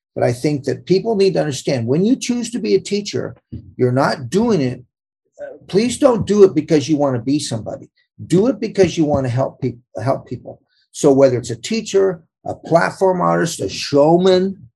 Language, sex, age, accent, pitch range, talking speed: English, male, 50-69, American, 130-185 Hz, 190 wpm